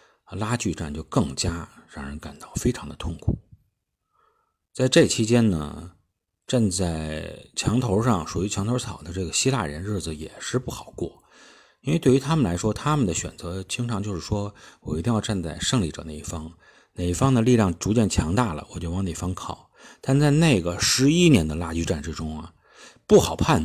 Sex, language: male, Chinese